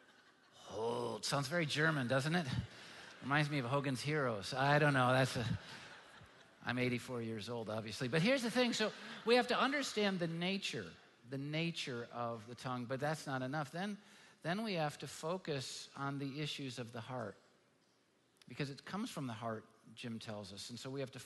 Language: English